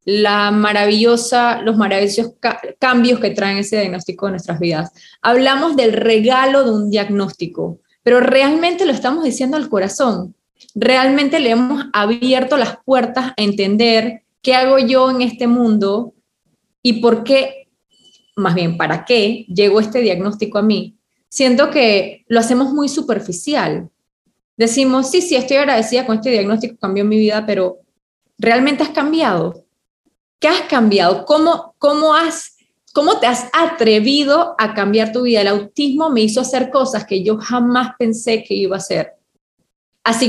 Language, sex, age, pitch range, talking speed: Spanish, female, 20-39, 205-260 Hz, 145 wpm